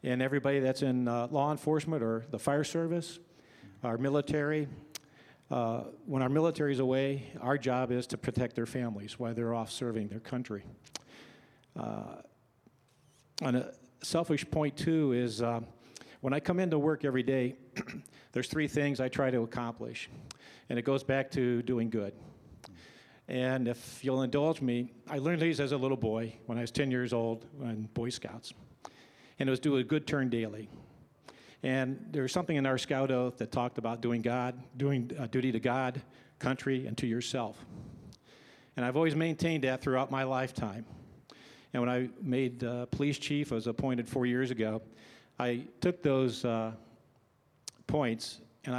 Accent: American